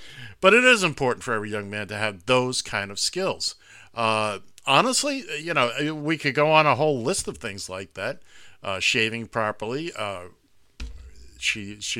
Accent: American